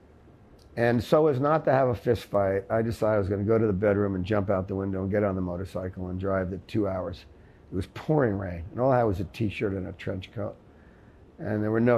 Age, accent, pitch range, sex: 60-79, American, 95-110 Hz, male